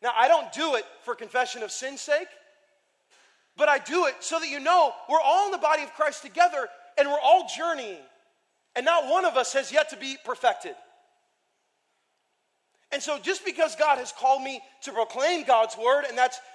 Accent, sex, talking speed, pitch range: American, male, 195 wpm, 235-310 Hz